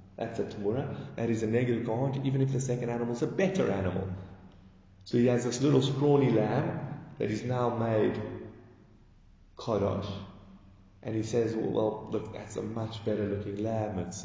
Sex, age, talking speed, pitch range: male, 30-49, 175 wpm, 105-145 Hz